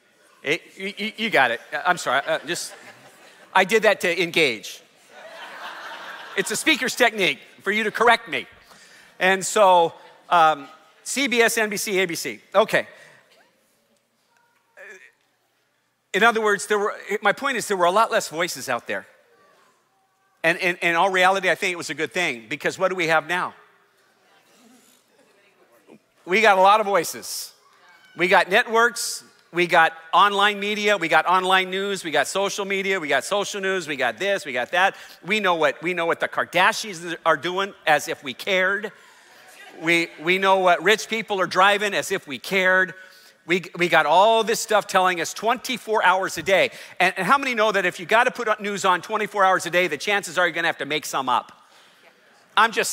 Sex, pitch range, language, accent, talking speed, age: male, 175-215 Hz, English, American, 185 wpm, 40-59